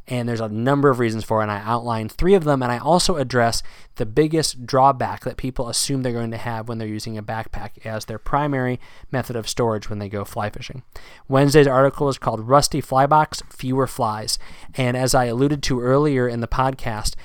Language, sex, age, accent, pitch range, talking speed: English, male, 20-39, American, 115-145 Hz, 215 wpm